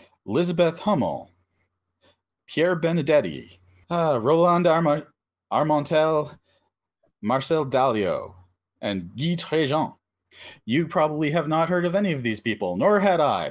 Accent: American